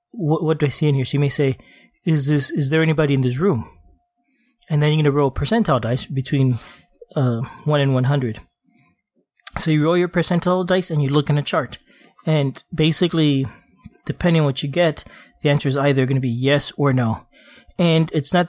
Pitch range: 135-175 Hz